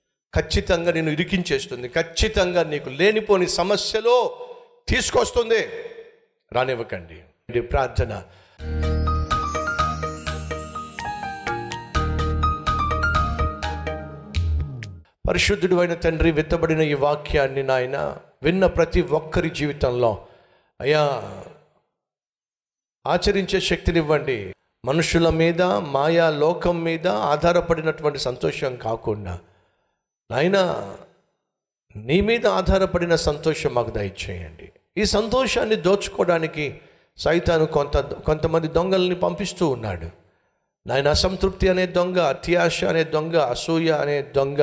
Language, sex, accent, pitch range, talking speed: Telugu, male, native, 115-180 Hz, 80 wpm